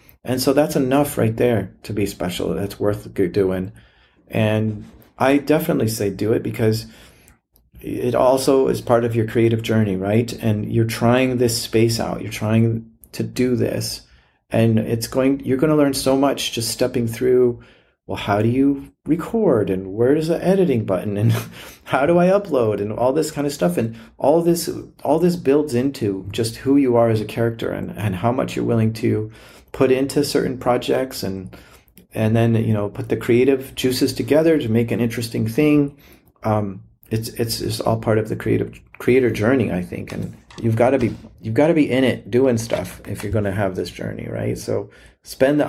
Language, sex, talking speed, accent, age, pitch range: English, male, 195 wpm, American, 40-59, 110-130 Hz